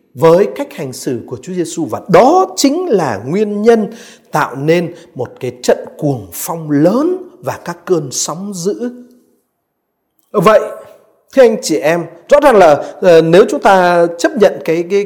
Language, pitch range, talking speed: Vietnamese, 165-270 Hz, 165 wpm